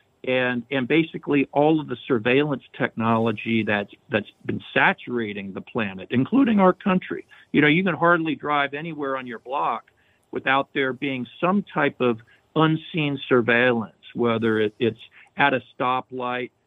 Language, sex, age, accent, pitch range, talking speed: English, male, 50-69, American, 120-150 Hz, 145 wpm